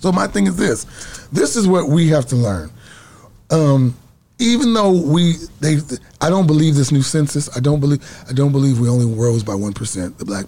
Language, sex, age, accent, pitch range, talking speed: English, male, 30-49, American, 125-160 Hz, 190 wpm